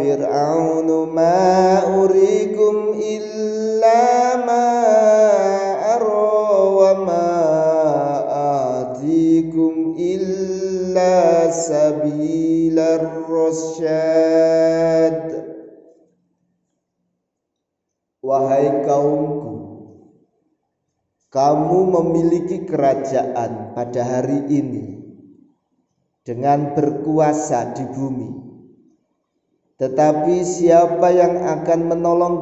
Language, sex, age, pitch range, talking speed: Indonesian, male, 50-69, 135-170 Hz, 35 wpm